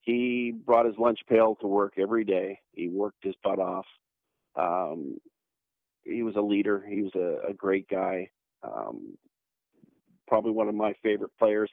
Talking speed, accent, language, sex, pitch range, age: 165 wpm, American, English, male, 100-115 Hz, 40-59